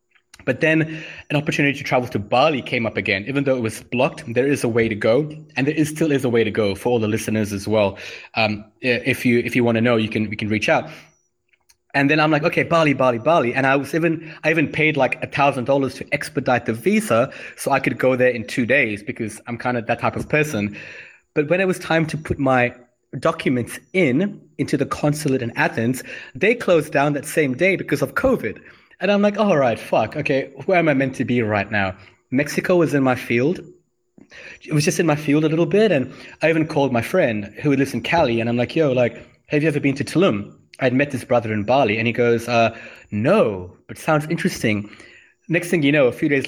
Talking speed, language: 240 wpm, English